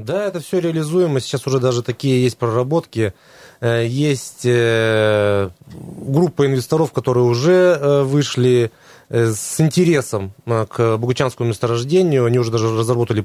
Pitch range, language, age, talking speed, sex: 120-160 Hz, Russian, 20-39, 115 wpm, male